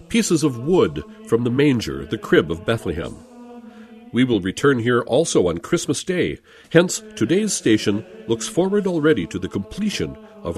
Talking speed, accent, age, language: 160 wpm, American, 50-69, English